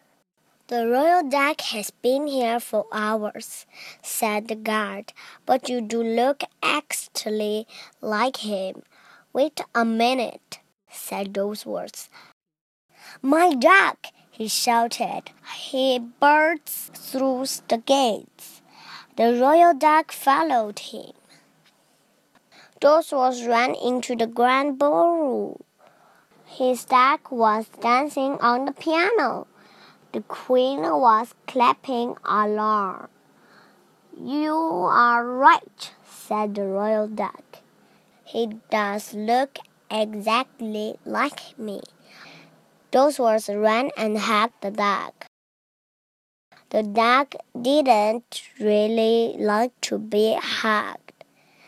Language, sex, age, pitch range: Chinese, male, 20-39, 215-270 Hz